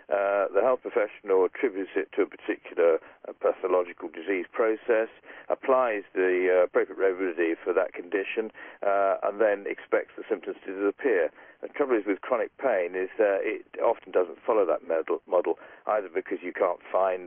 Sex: male